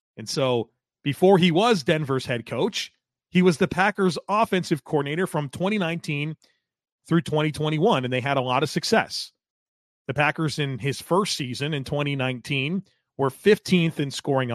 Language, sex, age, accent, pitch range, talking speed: English, male, 30-49, American, 130-165 Hz, 155 wpm